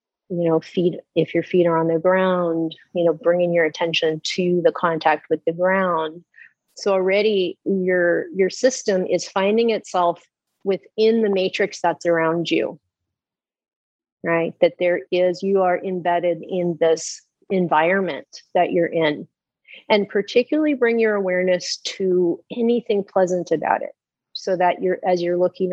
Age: 30-49